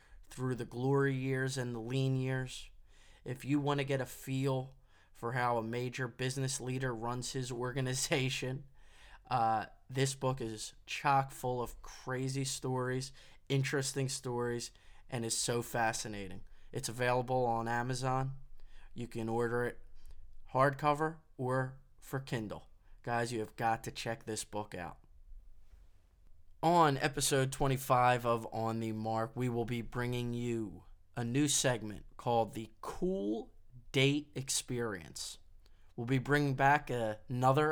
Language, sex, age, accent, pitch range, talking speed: English, male, 20-39, American, 110-140 Hz, 135 wpm